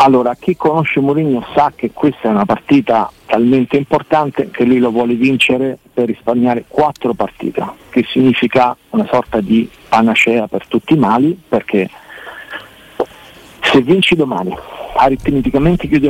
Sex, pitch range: male, 125-165 Hz